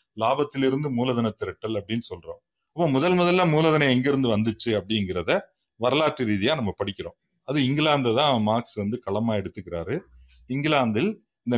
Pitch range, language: 110-140 Hz, Tamil